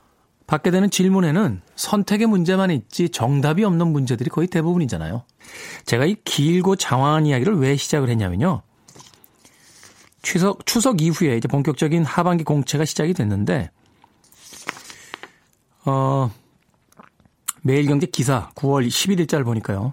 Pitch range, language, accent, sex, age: 140-185 Hz, Korean, native, male, 40-59